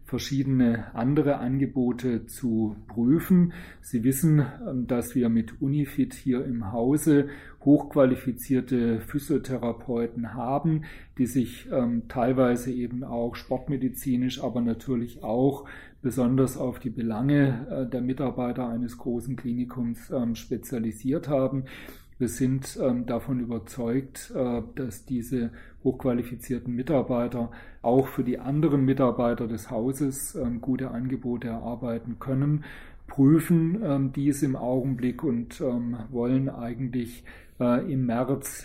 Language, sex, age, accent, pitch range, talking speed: German, male, 40-59, German, 120-135 Hz, 115 wpm